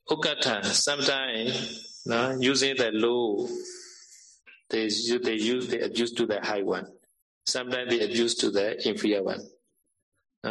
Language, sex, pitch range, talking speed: Vietnamese, male, 115-145 Hz, 125 wpm